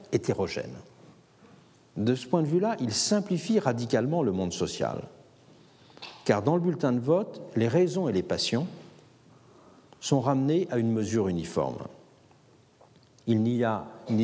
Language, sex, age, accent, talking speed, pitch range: French, male, 60-79, French, 140 wpm, 110-170 Hz